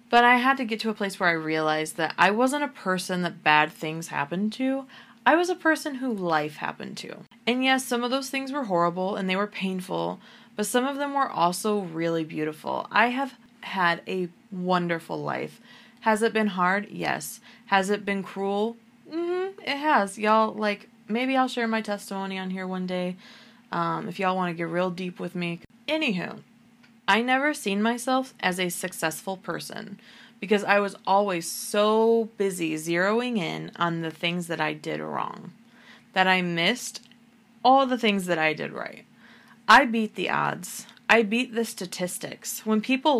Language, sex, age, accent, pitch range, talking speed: English, female, 20-39, American, 180-240 Hz, 185 wpm